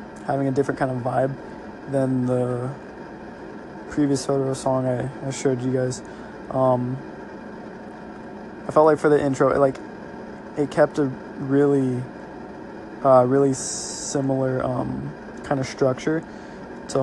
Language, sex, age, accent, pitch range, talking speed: English, male, 20-39, American, 130-140 Hz, 130 wpm